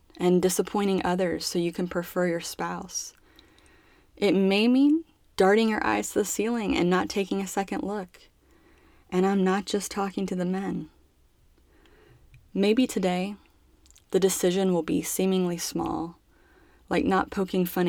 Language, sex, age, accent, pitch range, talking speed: English, female, 20-39, American, 170-215 Hz, 150 wpm